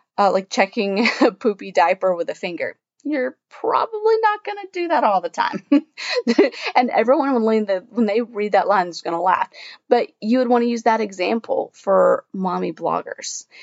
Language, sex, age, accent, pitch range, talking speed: English, female, 30-49, American, 185-240 Hz, 180 wpm